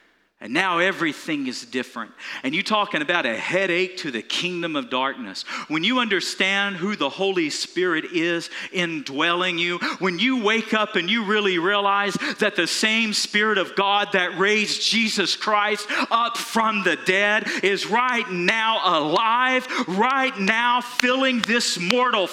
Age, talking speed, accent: 50-69, 155 wpm, American